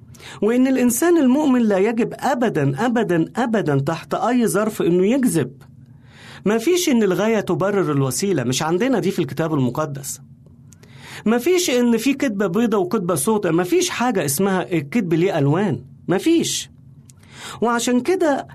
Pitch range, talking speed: 165-245 Hz, 130 wpm